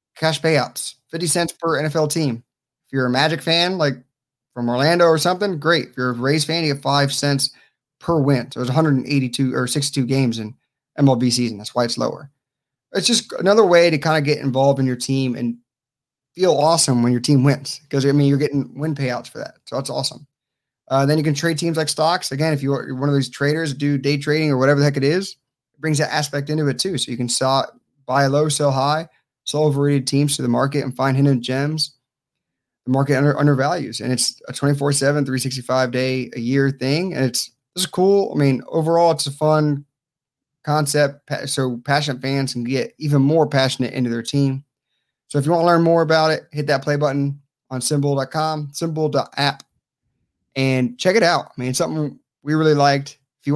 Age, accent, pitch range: 30-49, American, 130-155 Hz